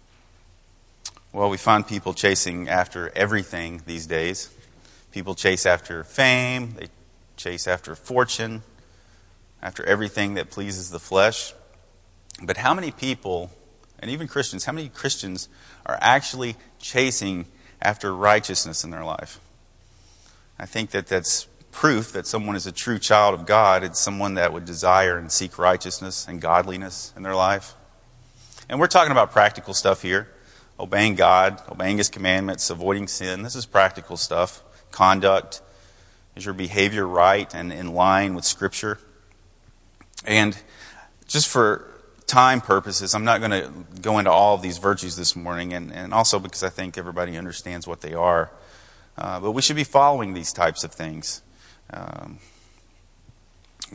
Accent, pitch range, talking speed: American, 90-105 Hz, 150 wpm